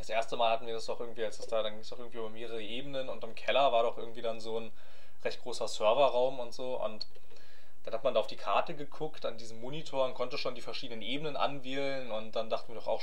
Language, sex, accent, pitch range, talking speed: German, male, German, 120-160 Hz, 260 wpm